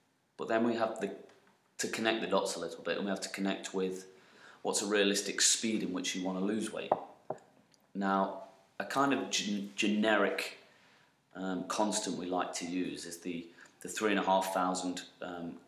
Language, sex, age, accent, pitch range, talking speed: English, male, 30-49, British, 95-110 Hz, 165 wpm